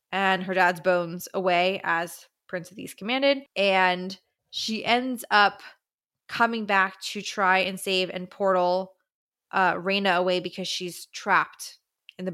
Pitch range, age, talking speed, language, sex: 185-245 Hz, 20-39, 145 wpm, English, female